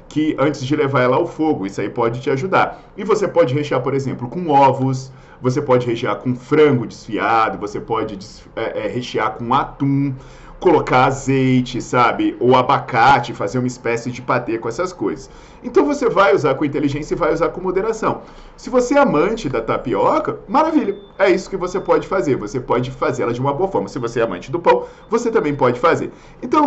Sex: male